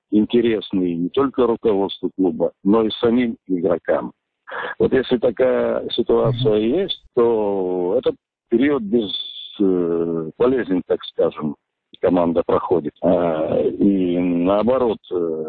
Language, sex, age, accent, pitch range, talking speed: Russian, male, 50-69, native, 90-125 Hz, 95 wpm